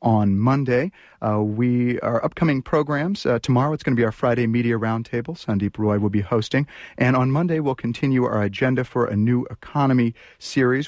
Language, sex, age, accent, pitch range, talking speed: English, male, 40-59, American, 110-135 Hz, 190 wpm